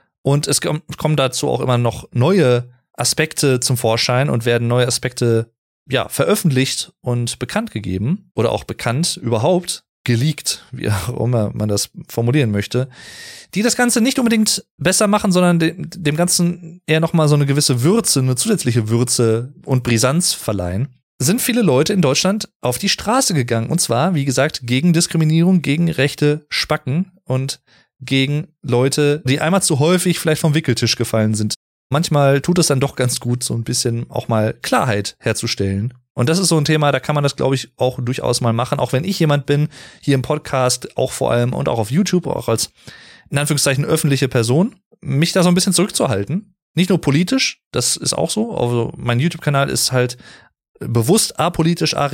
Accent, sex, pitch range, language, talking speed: German, male, 120-170 Hz, German, 185 wpm